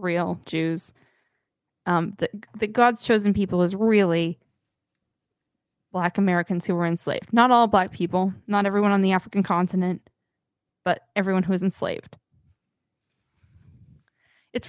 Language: English